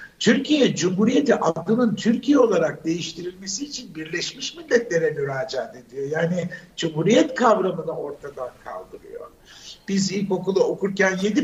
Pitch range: 175-230 Hz